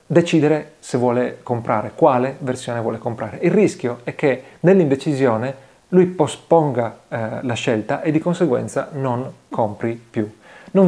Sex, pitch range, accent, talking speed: male, 120-160 Hz, native, 130 wpm